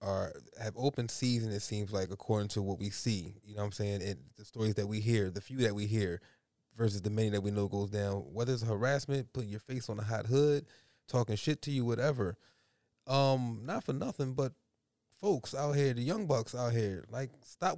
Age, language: 20-39, English